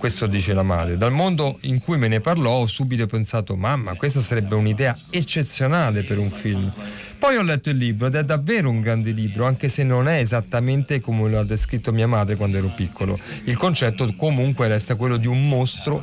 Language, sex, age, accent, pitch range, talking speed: Italian, male, 40-59, native, 110-150 Hz, 205 wpm